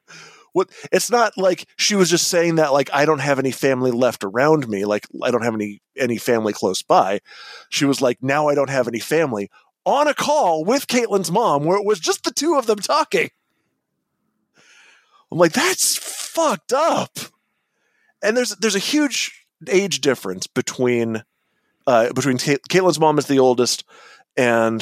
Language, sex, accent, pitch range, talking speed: English, male, American, 120-185 Hz, 170 wpm